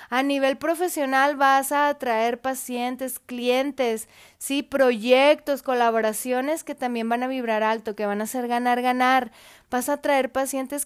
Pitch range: 240-280 Hz